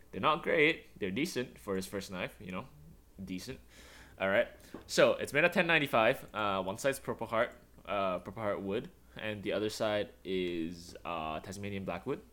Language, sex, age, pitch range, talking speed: English, male, 10-29, 90-110 Hz, 170 wpm